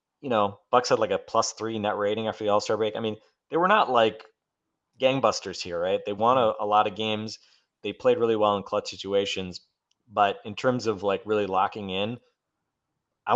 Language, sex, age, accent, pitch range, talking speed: English, male, 30-49, American, 105-135 Hz, 205 wpm